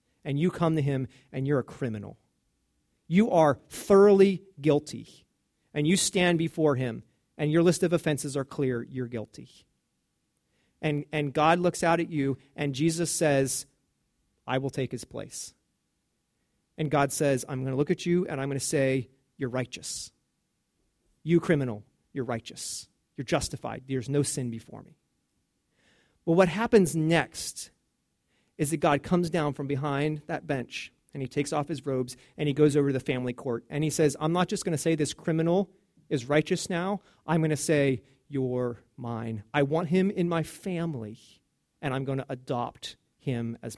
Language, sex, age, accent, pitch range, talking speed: English, male, 40-59, American, 130-165 Hz, 175 wpm